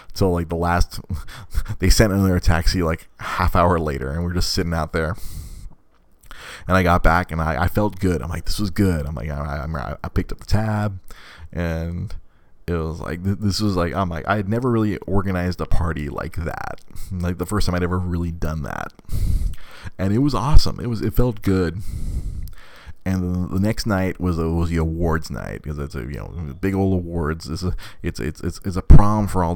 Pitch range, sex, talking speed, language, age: 80-95 Hz, male, 215 wpm, English, 30-49